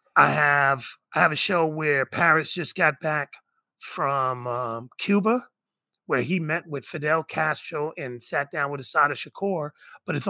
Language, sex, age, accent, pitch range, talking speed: English, male, 30-49, American, 135-175 Hz, 165 wpm